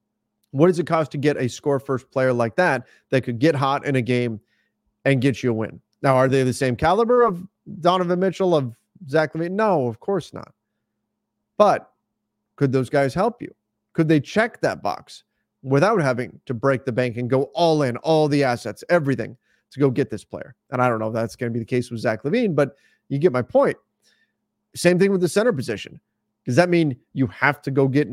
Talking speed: 220 wpm